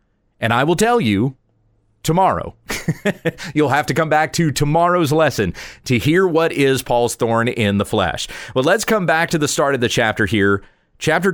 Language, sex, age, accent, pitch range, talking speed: English, male, 40-59, American, 115-160 Hz, 185 wpm